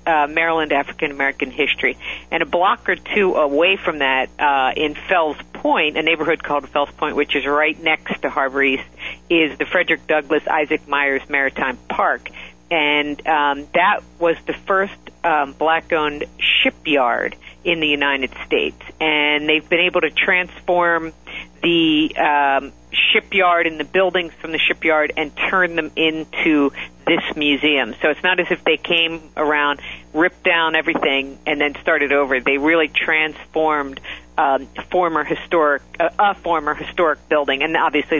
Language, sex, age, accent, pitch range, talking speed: English, female, 50-69, American, 145-165 Hz, 155 wpm